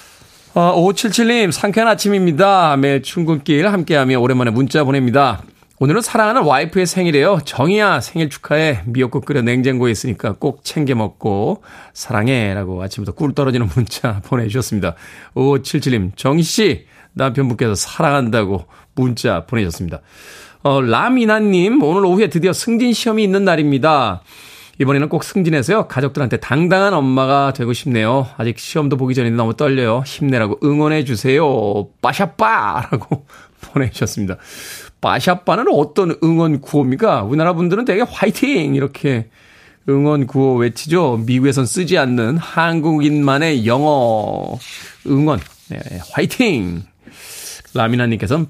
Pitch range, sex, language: 120-165 Hz, male, Korean